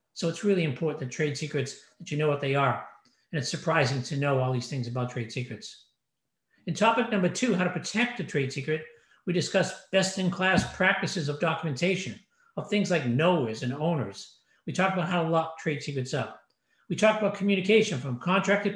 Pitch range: 150-205 Hz